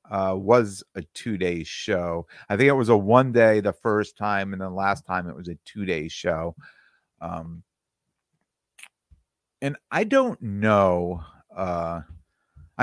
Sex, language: male, English